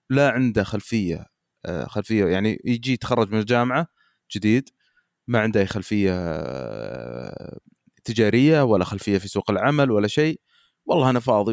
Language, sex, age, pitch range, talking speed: Arabic, male, 20-39, 115-160 Hz, 130 wpm